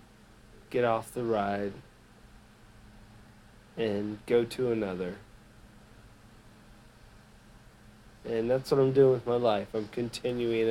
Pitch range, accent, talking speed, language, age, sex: 105-115 Hz, American, 100 wpm, English, 40-59, male